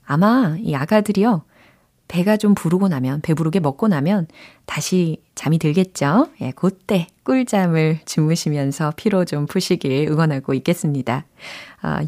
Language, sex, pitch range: Korean, female, 150-240 Hz